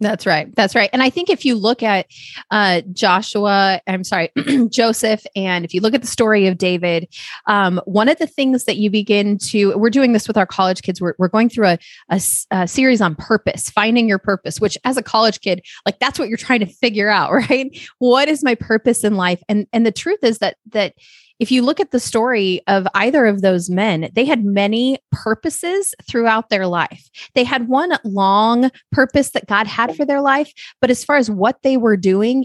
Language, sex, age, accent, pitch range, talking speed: English, female, 30-49, American, 195-255 Hz, 215 wpm